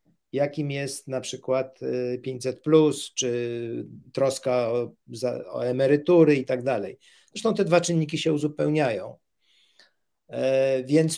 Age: 50-69